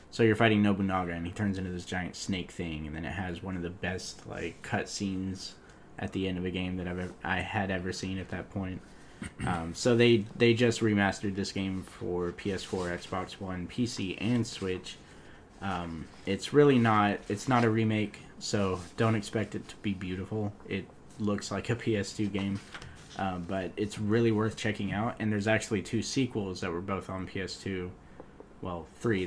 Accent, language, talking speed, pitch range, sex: American, English, 190 wpm, 90-110 Hz, male